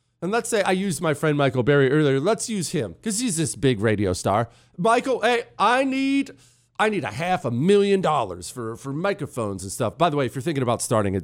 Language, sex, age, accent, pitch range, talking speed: English, male, 40-59, American, 110-155 Hz, 235 wpm